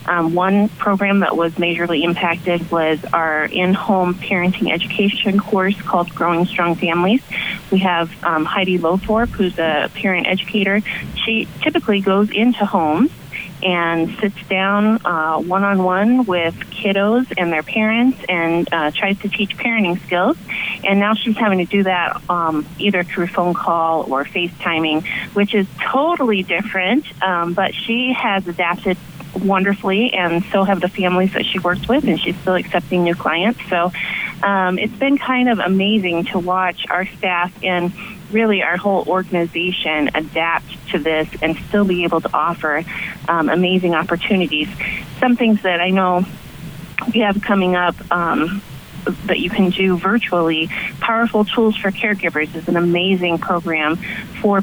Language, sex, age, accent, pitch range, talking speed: English, female, 30-49, American, 170-205 Hz, 155 wpm